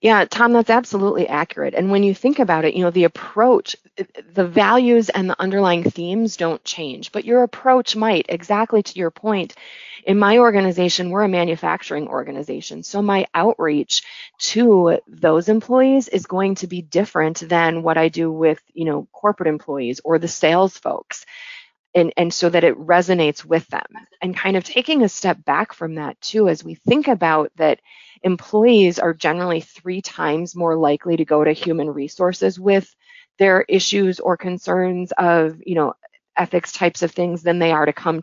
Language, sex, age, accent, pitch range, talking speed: English, female, 30-49, American, 165-210 Hz, 180 wpm